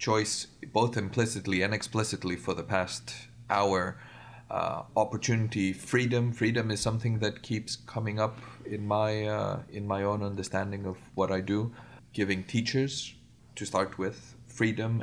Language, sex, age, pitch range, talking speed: English, male, 30-49, 95-115 Hz, 145 wpm